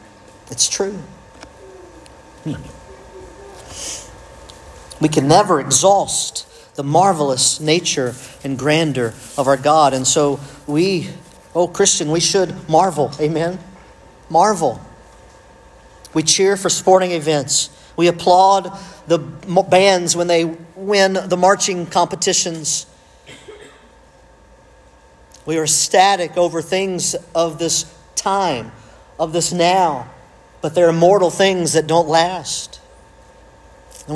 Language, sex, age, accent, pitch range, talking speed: English, male, 50-69, American, 150-180 Hz, 105 wpm